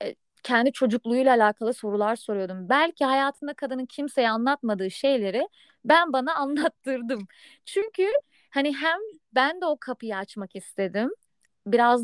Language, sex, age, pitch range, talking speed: Turkish, female, 30-49, 220-280 Hz, 120 wpm